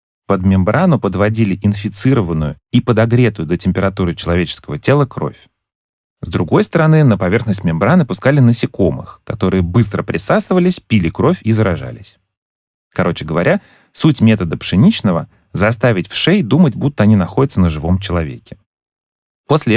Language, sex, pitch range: Russian, male, 95-135 Hz